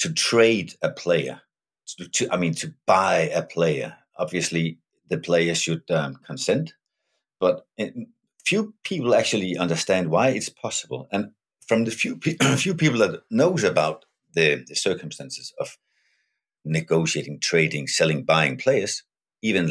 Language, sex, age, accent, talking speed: Danish, male, 50-69, native, 145 wpm